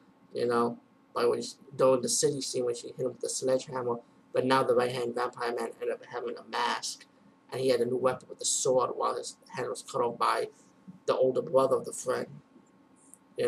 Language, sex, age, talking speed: English, male, 30-49, 225 wpm